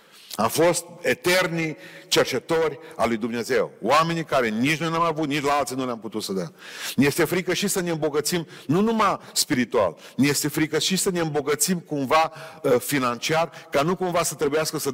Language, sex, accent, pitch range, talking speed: Romanian, male, native, 120-180 Hz, 195 wpm